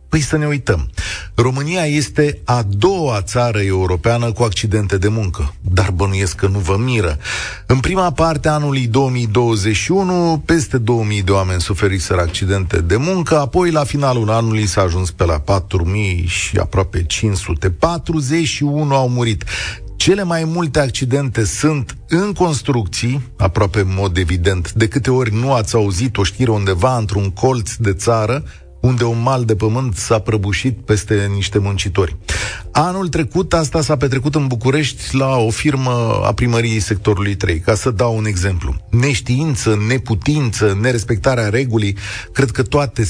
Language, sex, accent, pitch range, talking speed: Romanian, male, native, 100-130 Hz, 150 wpm